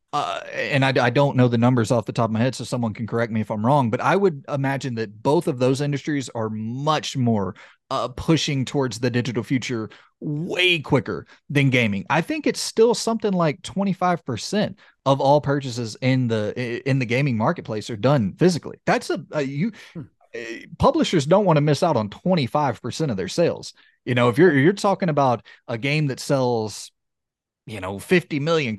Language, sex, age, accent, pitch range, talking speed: English, male, 30-49, American, 120-165 Hz, 195 wpm